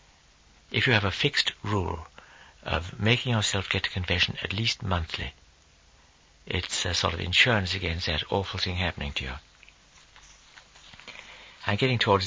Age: 60-79